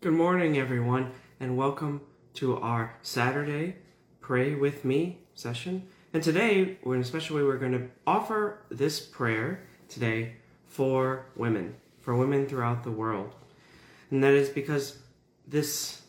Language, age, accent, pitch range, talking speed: English, 30-49, American, 120-145 Hz, 140 wpm